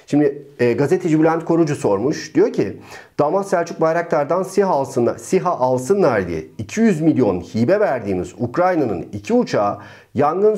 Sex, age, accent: male, 40-59, native